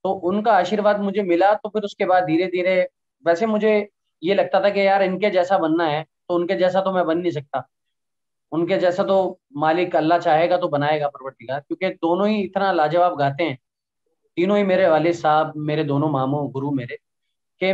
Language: Hindi